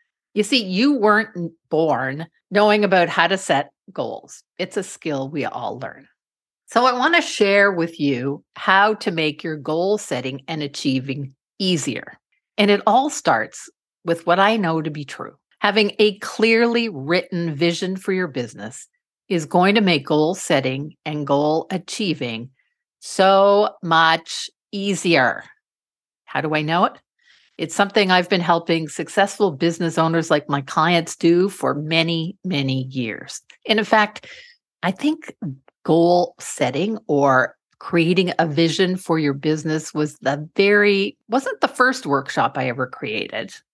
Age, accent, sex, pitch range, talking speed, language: 50-69, American, female, 155-205 Hz, 150 wpm, English